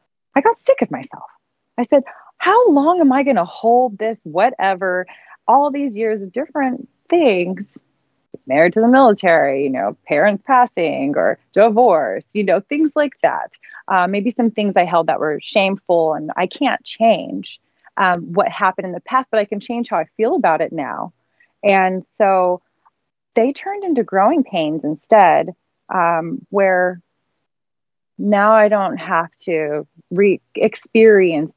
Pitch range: 190-295 Hz